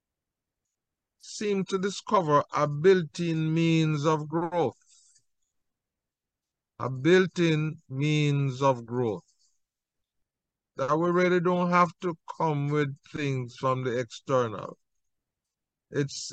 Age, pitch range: 50-69, 135-170 Hz